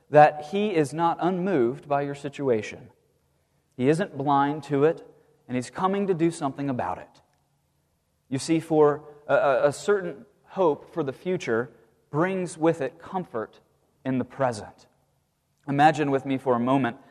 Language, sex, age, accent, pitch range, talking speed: English, male, 30-49, American, 130-170 Hz, 155 wpm